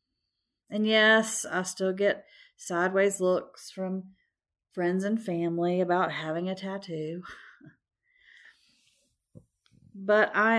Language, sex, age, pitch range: English, female, 40-59, 175-220 Hz